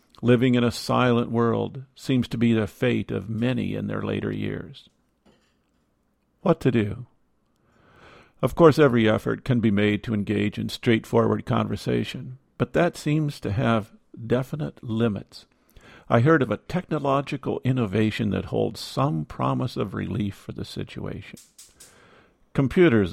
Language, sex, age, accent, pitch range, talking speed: English, male, 50-69, American, 105-130 Hz, 140 wpm